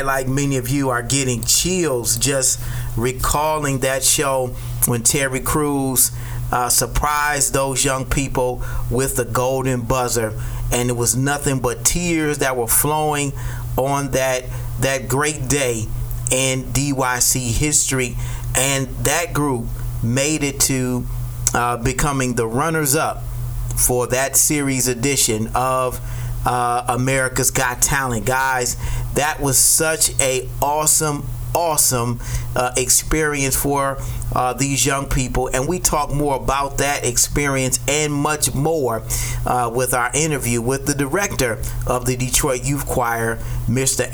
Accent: American